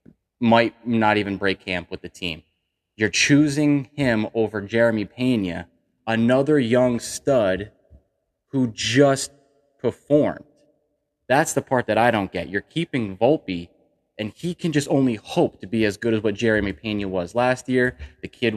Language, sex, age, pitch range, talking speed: English, male, 20-39, 105-125 Hz, 160 wpm